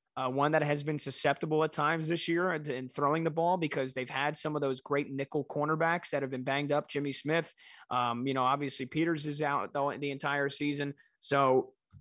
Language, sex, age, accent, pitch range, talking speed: English, male, 30-49, American, 125-150 Hz, 210 wpm